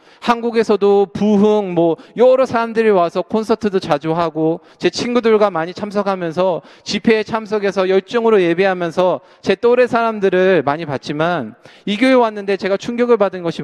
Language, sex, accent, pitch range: Korean, male, native, 155-215 Hz